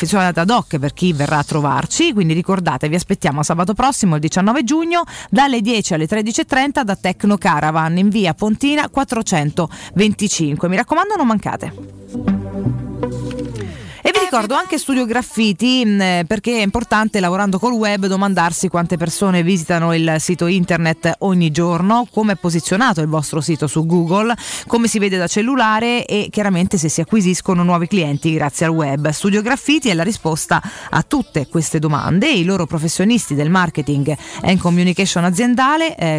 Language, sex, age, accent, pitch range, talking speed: Italian, female, 30-49, native, 165-225 Hz, 155 wpm